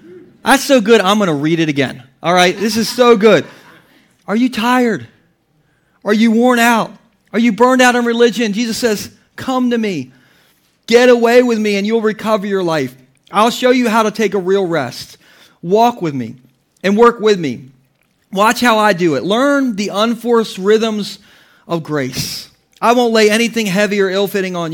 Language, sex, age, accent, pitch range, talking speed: English, male, 40-59, American, 155-230 Hz, 185 wpm